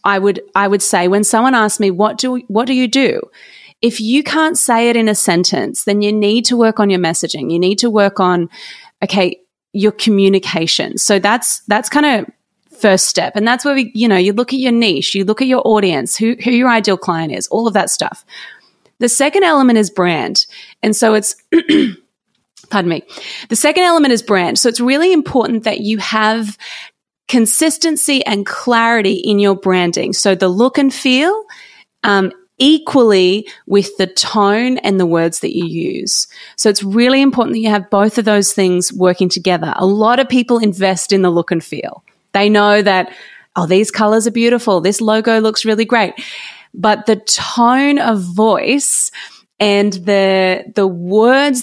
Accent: Australian